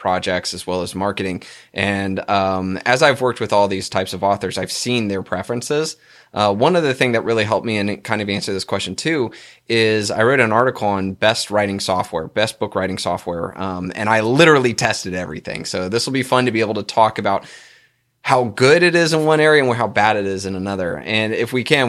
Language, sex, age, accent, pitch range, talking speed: English, male, 20-39, American, 100-130 Hz, 230 wpm